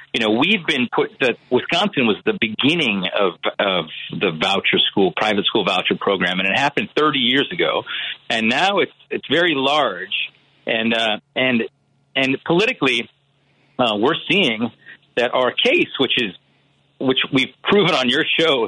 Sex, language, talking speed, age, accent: male, English, 160 wpm, 40-59, American